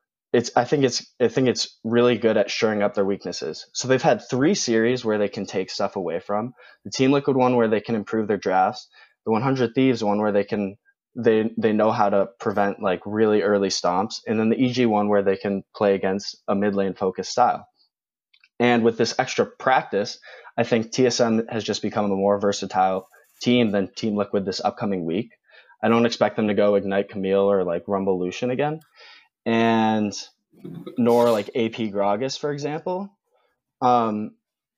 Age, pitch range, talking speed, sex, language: 20-39, 100-120 Hz, 190 wpm, male, English